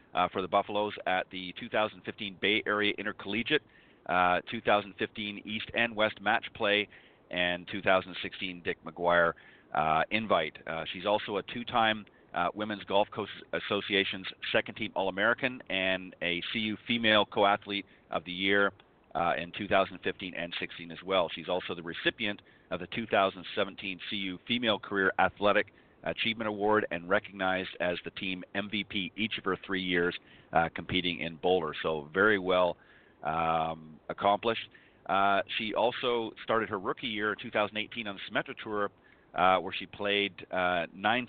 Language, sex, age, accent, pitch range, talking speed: English, male, 40-59, American, 90-105 Hz, 145 wpm